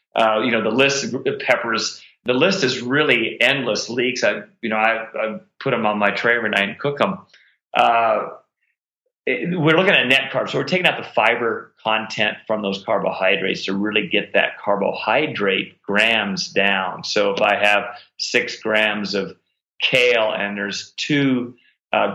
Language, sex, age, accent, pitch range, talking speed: English, male, 40-59, American, 105-130 Hz, 170 wpm